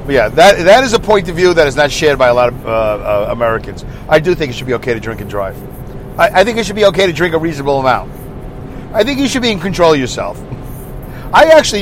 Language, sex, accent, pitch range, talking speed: English, male, American, 130-195 Hz, 270 wpm